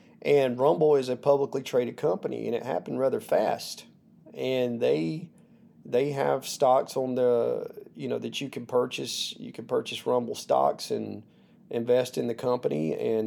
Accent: American